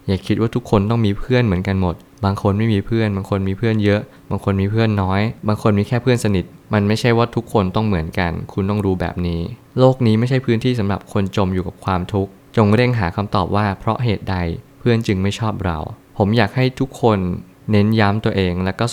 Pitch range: 95-115 Hz